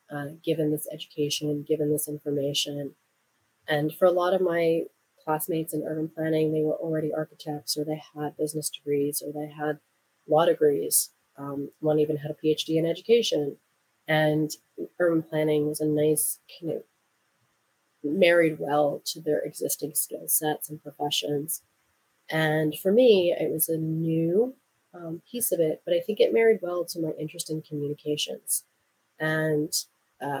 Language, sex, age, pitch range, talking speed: English, female, 30-49, 145-160 Hz, 160 wpm